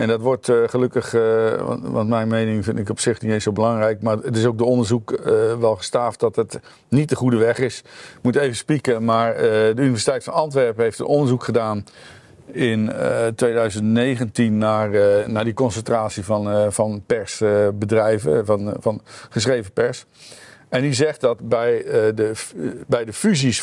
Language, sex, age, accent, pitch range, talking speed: Dutch, male, 50-69, Dutch, 110-130 Hz, 165 wpm